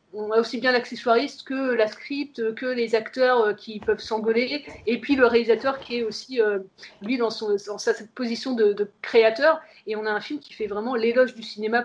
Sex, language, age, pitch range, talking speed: female, French, 30-49, 205-240 Hz, 215 wpm